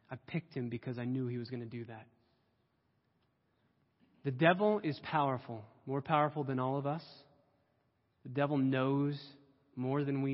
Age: 20-39